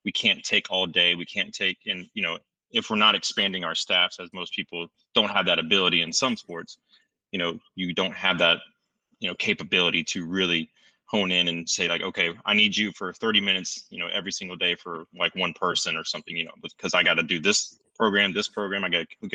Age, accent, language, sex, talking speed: 30-49, American, English, male, 235 wpm